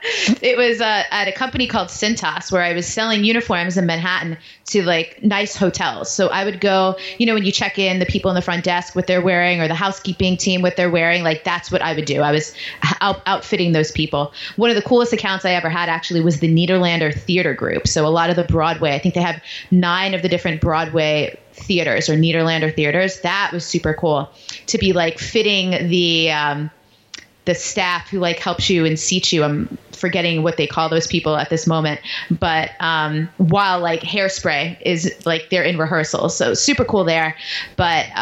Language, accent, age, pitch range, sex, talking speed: English, American, 20-39, 165-200 Hz, female, 210 wpm